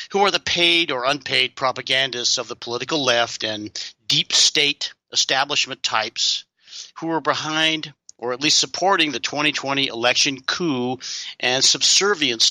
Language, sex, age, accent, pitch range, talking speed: English, male, 50-69, American, 125-160 Hz, 140 wpm